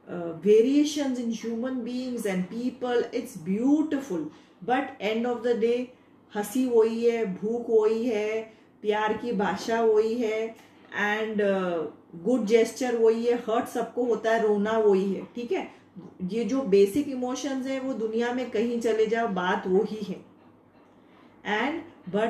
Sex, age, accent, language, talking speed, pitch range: female, 30-49, Indian, English, 140 wpm, 210-255 Hz